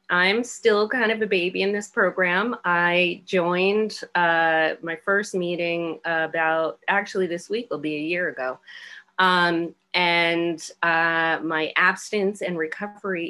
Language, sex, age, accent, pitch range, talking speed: English, female, 30-49, American, 160-200 Hz, 140 wpm